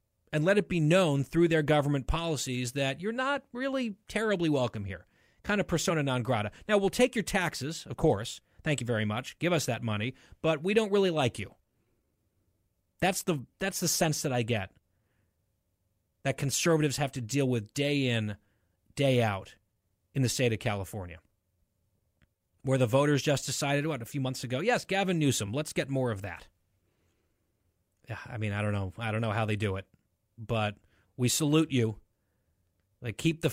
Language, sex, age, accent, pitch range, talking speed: English, male, 30-49, American, 105-150 Hz, 185 wpm